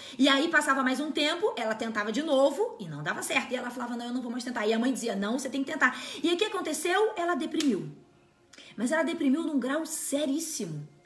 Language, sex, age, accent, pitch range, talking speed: Portuguese, female, 20-39, Brazilian, 250-350 Hz, 245 wpm